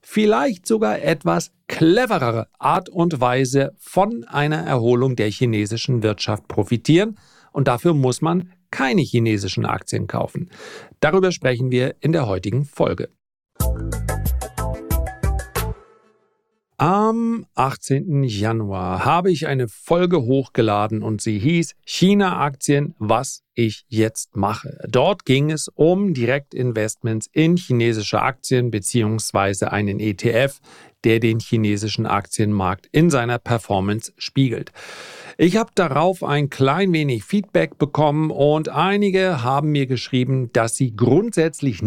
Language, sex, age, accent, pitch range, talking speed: German, male, 40-59, German, 115-160 Hz, 115 wpm